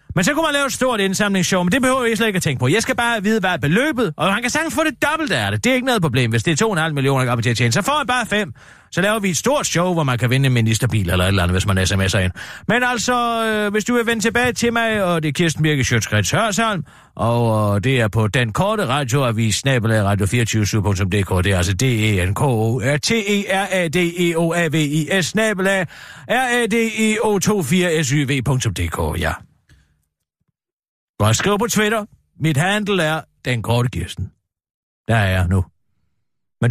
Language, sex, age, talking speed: Danish, male, 40-59, 200 wpm